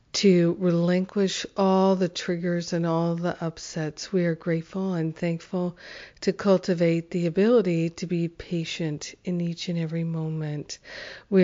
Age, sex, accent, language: 50-69, female, American, English